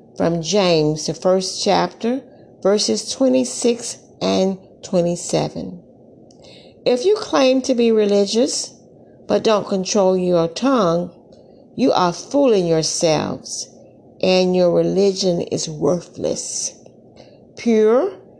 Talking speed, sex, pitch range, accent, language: 100 wpm, female, 170-220 Hz, American, English